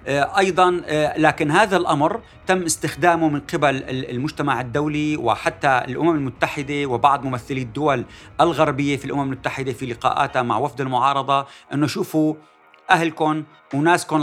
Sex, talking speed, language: male, 120 wpm, Arabic